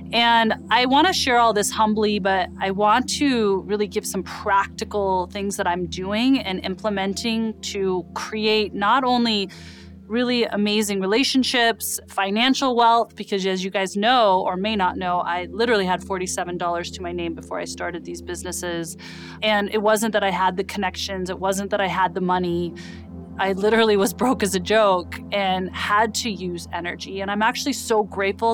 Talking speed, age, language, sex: 175 wpm, 20-39, English, female